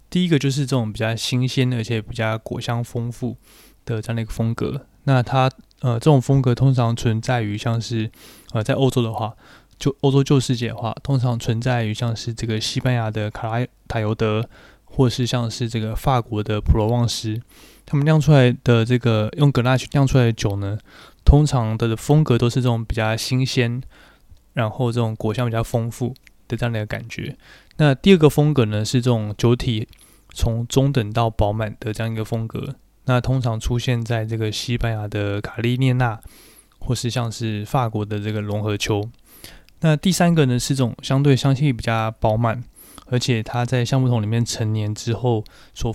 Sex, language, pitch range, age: male, Chinese, 110-130 Hz, 20-39